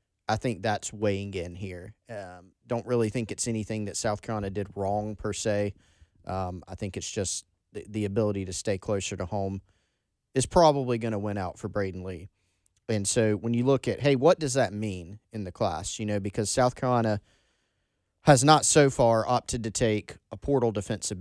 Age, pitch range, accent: 30-49, 100-125 Hz, American